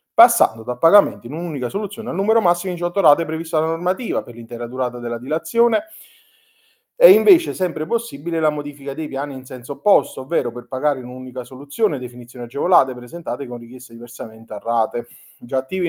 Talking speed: 180 wpm